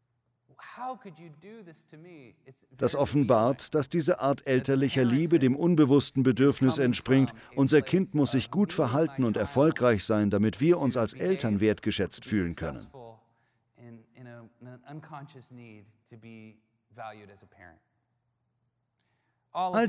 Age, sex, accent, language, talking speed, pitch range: 40-59, male, German, German, 90 wpm, 110-150 Hz